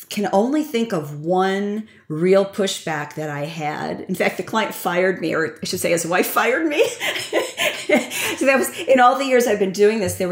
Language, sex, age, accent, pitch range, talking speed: English, female, 40-59, American, 165-205 Hz, 210 wpm